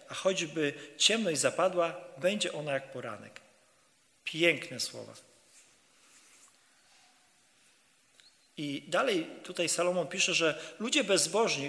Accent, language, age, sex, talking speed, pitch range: native, Polish, 40-59, male, 90 wpm, 145-195 Hz